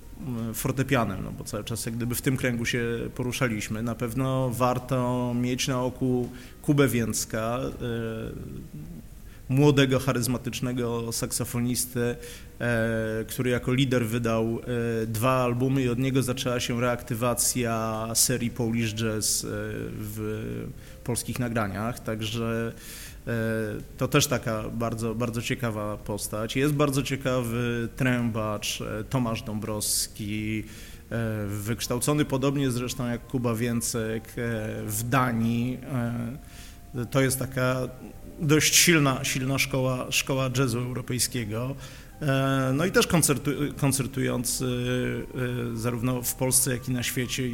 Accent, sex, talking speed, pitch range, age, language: native, male, 105 wpm, 115-130 Hz, 30-49, Polish